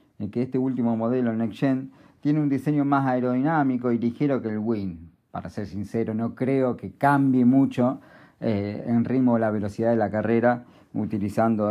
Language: Spanish